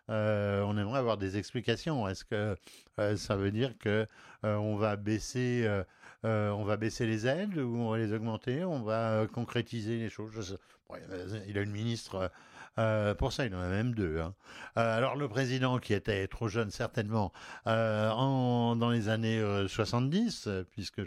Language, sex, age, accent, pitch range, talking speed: French, male, 60-79, French, 105-125 Hz, 175 wpm